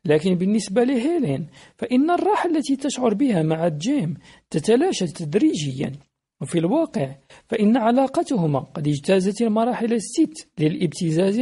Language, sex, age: Arabic, male, 50-69